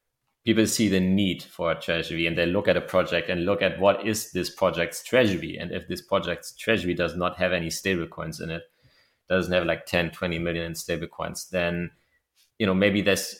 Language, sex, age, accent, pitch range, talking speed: English, male, 30-49, German, 85-105 Hz, 215 wpm